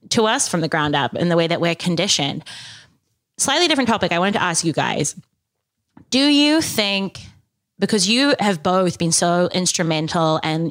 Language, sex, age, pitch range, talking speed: English, female, 20-39, 165-205 Hz, 180 wpm